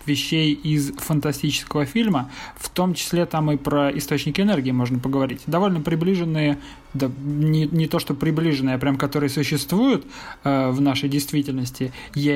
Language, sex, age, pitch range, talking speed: Russian, male, 20-39, 140-165 Hz, 150 wpm